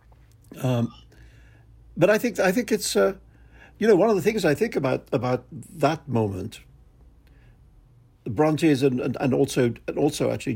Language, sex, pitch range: English, male, 125-160 Hz